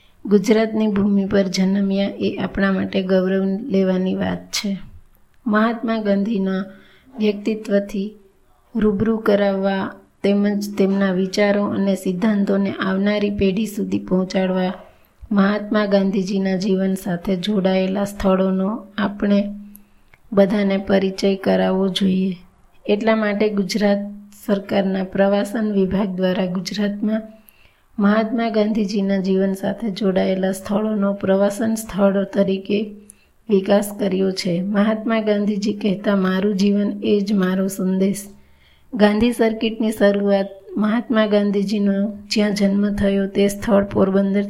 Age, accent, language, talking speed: 20-39, native, Gujarati, 95 wpm